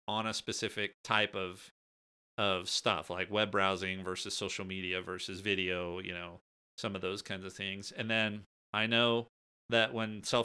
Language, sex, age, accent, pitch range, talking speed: English, male, 30-49, American, 100-120 Hz, 170 wpm